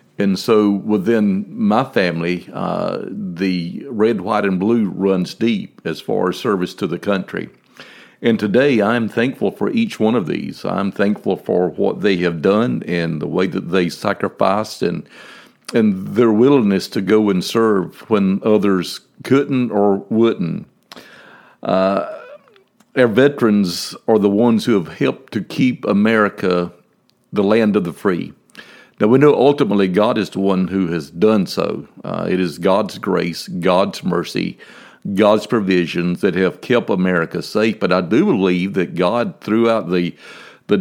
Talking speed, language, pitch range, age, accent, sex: 155 wpm, English, 90-115 Hz, 50-69, American, male